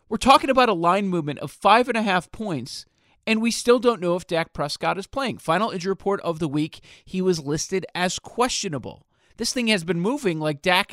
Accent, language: American, English